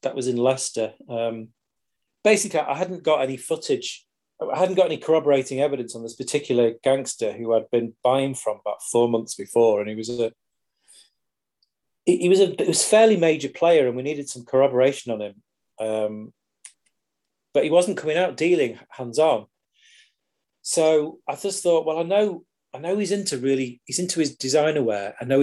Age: 30-49